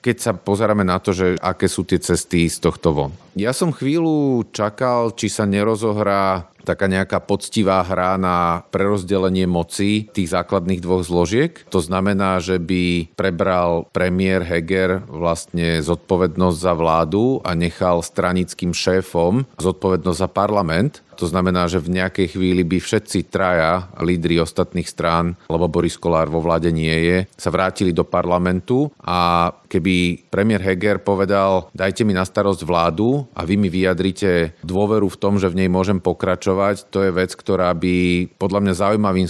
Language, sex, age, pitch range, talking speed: Slovak, male, 40-59, 90-100 Hz, 155 wpm